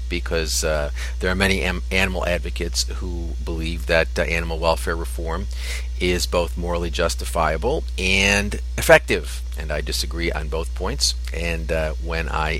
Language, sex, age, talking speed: English, male, 40-59, 145 wpm